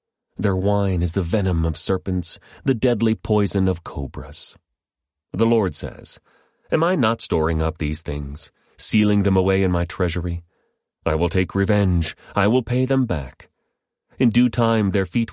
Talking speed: 165 wpm